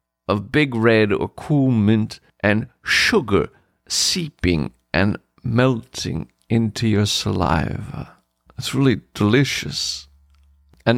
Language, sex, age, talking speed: English, male, 40-59, 100 wpm